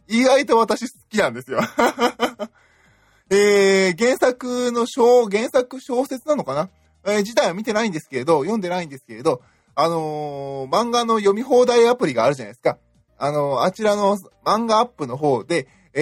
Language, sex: Japanese, male